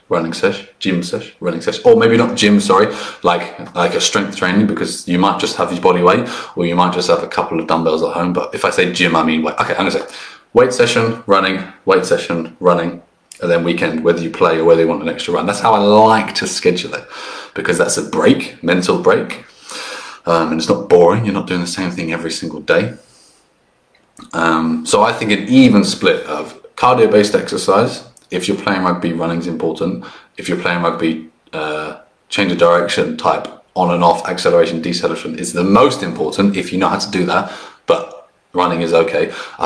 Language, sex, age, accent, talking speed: English, male, 30-49, British, 215 wpm